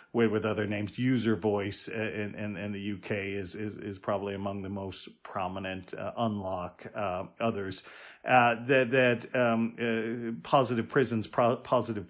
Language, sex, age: English, male, 40-59